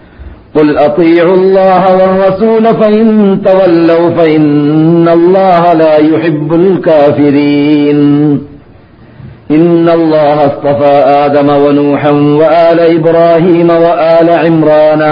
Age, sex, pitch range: 50-69, male, 145-180 Hz